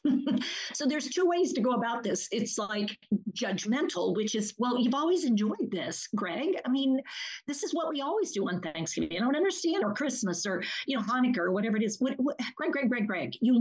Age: 50-69